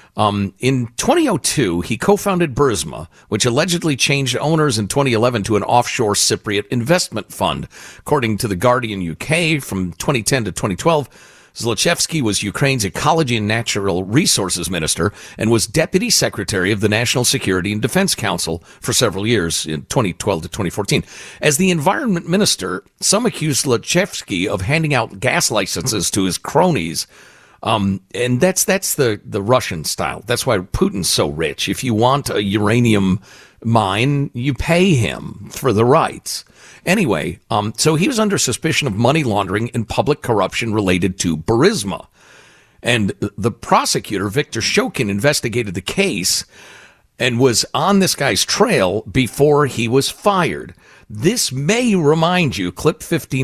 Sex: male